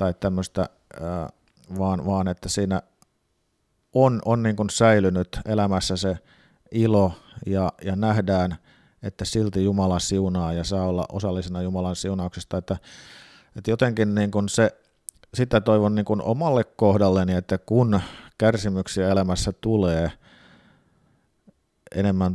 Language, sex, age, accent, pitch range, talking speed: Finnish, male, 50-69, native, 95-110 Hz, 100 wpm